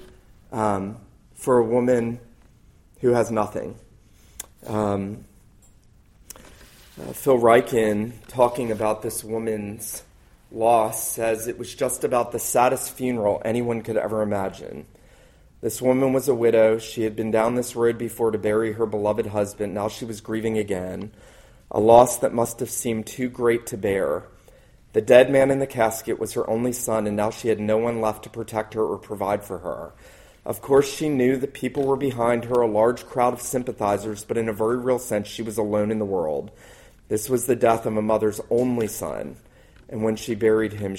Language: English